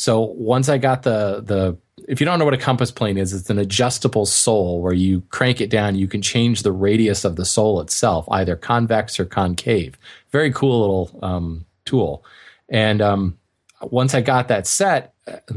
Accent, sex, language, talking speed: American, male, English, 195 wpm